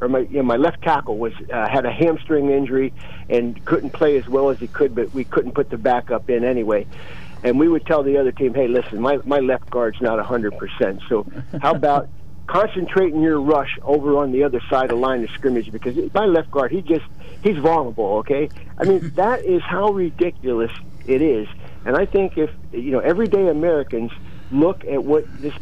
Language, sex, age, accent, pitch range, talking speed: English, male, 60-79, American, 125-165 Hz, 210 wpm